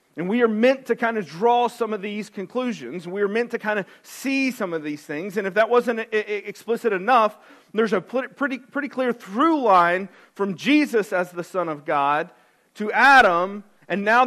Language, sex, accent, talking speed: English, male, American, 195 wpm